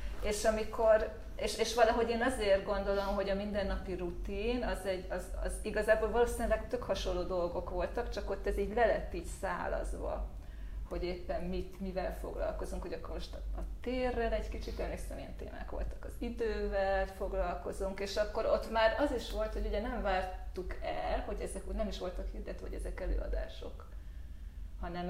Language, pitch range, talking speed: Hungarian, 185-225 Hz, 170 wpm